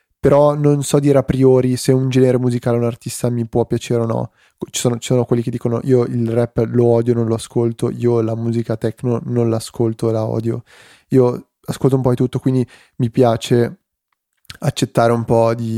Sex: male